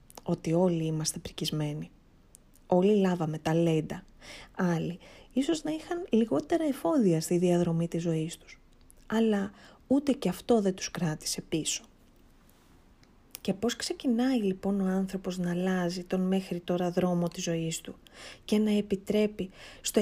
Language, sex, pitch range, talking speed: Greek, female, 175-240 Hz, 135 wpm